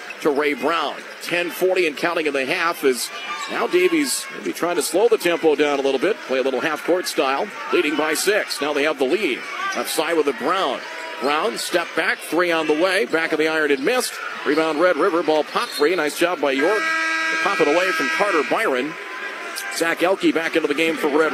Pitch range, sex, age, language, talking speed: 155-215 Hz, male, 40-59, English, 220 wpm